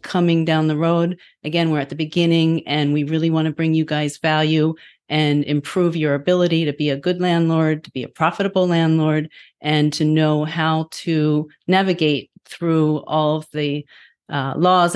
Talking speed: 175 wpm